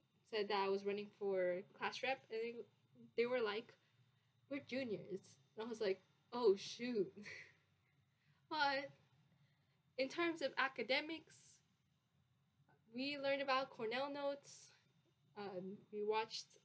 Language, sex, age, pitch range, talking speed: English, female, 10-29, 150-235 Hz, 120 wpm